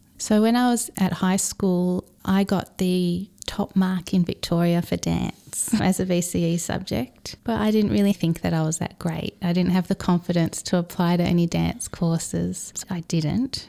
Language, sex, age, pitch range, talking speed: English, female, 30-49, 170-200 Hz, 190 wpm